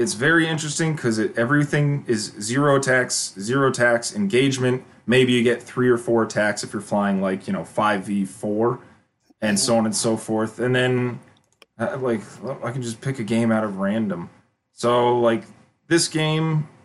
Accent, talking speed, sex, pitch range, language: American, 170 wpm, male, 115-150 Hz, English